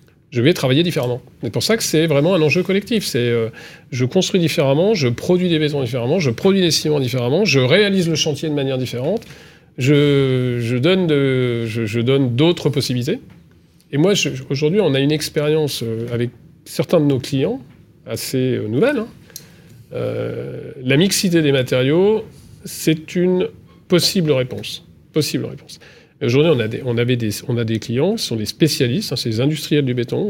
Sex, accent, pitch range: male, French, 125-165 Hz